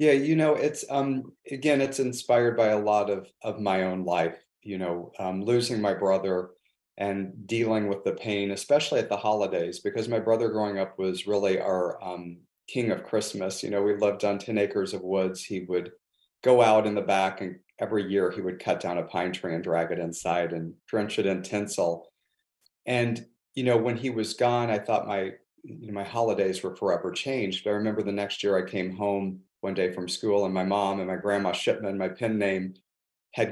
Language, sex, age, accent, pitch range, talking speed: English, male, 40-59, American, 95-115 Hz, 210 wpm